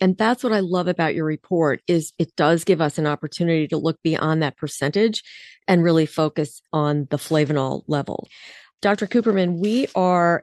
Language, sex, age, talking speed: English, female, 40-59, 180 wpm